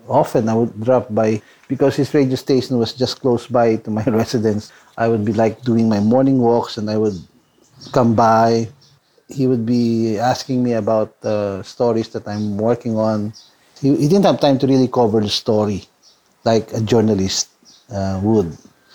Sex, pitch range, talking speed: male, 110-135 Hz, 175 wpm